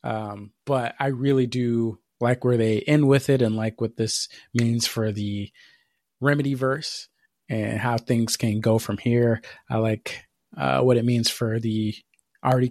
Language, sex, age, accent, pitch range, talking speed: English, male, 30-49, American, 110-135 Hz, 170 wpm